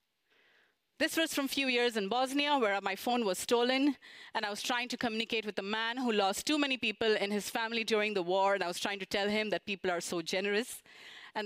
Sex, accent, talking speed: female, Indian, 240 wpm